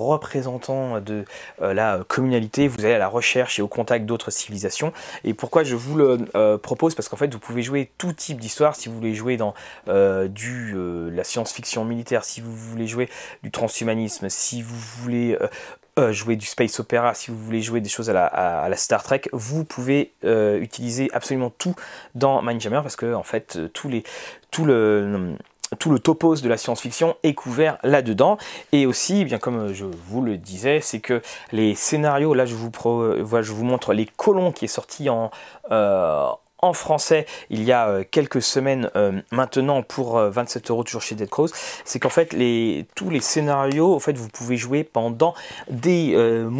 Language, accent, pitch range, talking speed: French, French, 115-140 Hz, 195 wpm